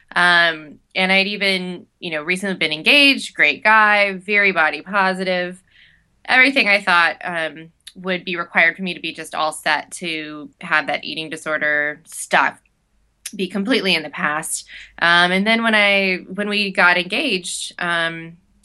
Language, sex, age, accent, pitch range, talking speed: English, female, 20-39, American, 155-195 Hz, 160 wpm